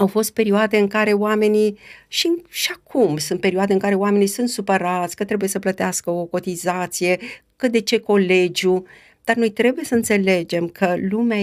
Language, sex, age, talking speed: Romanian, female, 50-69, 175 wpm